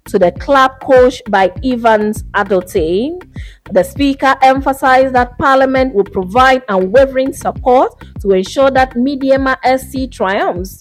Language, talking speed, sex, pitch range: English, 120 wpm, female, 200-270 Hz